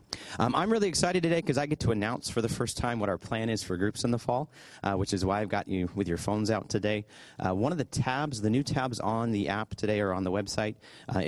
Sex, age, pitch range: male, 30-49, 95-120 Hz